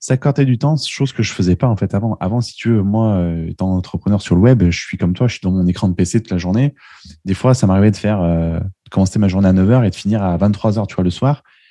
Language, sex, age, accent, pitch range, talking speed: French, male, 20-39, French, 100-125 Hz, 275 wpm